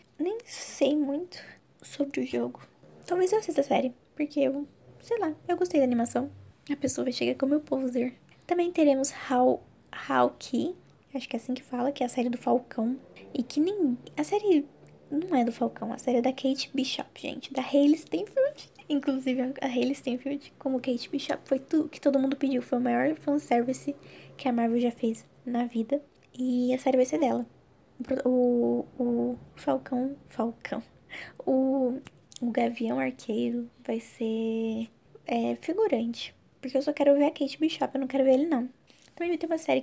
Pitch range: 245-290 Hz